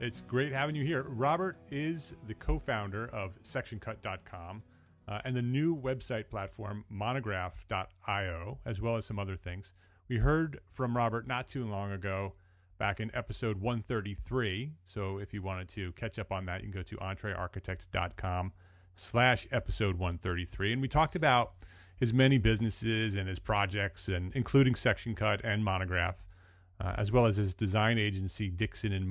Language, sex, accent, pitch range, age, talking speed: English, male, American, 95-120 Hz, 30-49, 160 wpm